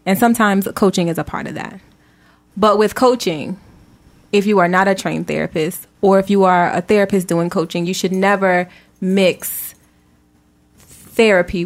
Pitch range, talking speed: 175-205 Hz, 160 wpm